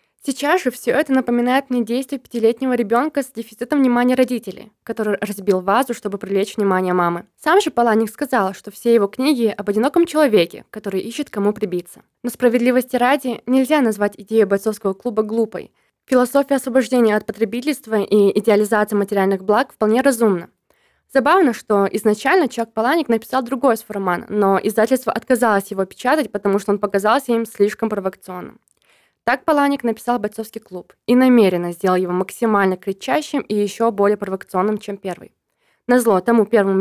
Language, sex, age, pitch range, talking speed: Russian, female, 20-39, 205-255 Hz, 155 wpm